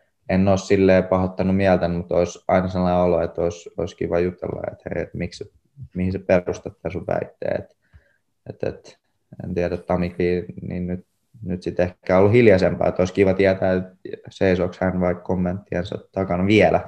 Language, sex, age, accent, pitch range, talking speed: Finnish, male, 20-39, native, 90-100 Hz, 160 wpm